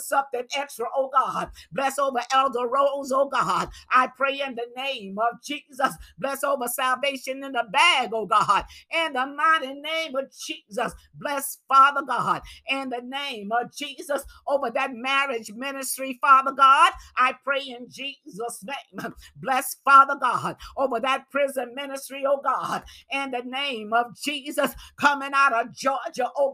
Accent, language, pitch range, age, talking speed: American, English, 245-280 Hz, 50-69, 155 wpm